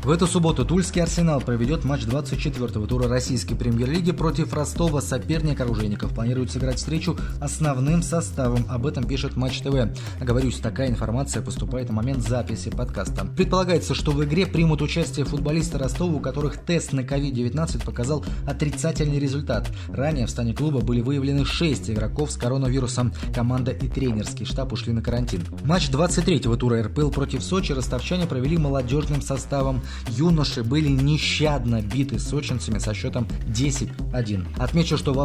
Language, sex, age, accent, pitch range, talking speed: Russian, male, 20-39, native, 115-145 Hz, 150 wpm